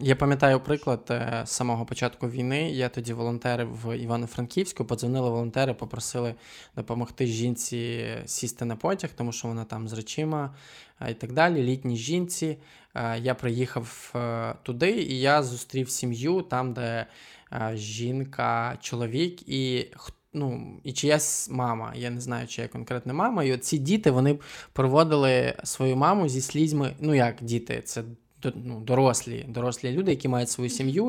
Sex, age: male, 20-39